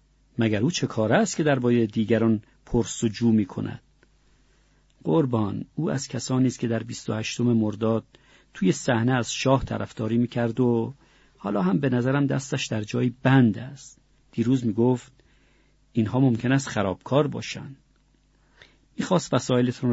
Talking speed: 150 wpm